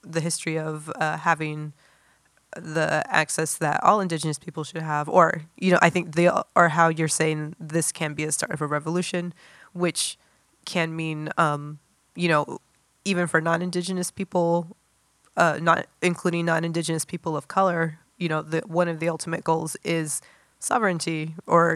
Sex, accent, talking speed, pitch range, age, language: female, American, 165 wpm, 155-175 Hz, 20-39, English